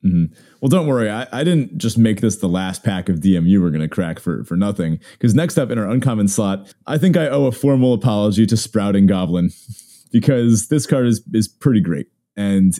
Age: 30-49